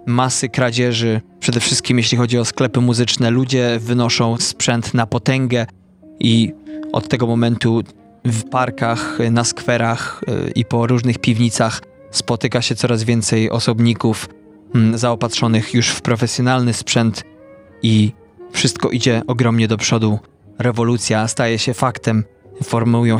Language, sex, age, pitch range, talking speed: Polish, male, 20-39, 120-140 Hz, 120 wpm